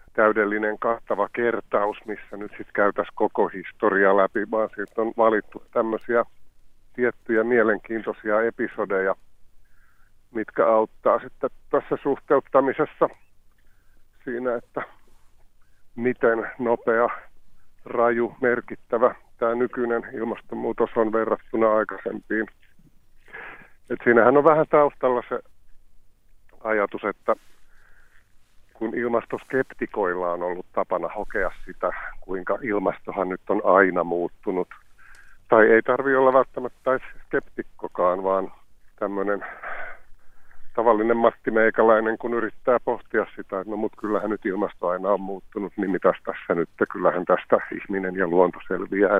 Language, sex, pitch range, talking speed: Finnish, male, 100-120 Hz, 105 wpm